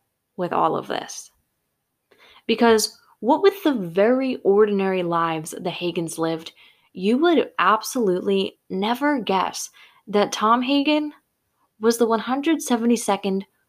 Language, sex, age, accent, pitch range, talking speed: English, female, 20-39, American, 180-240 Hz, 110 wpm